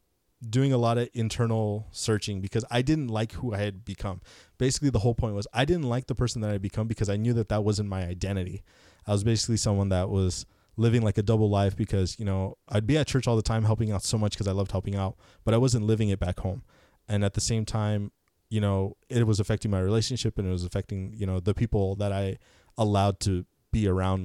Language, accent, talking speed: English, American, 245 wpm